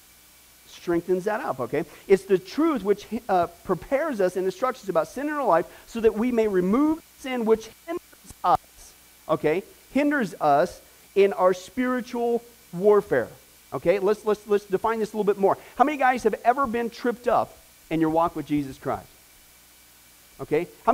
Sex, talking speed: male, 175 wpm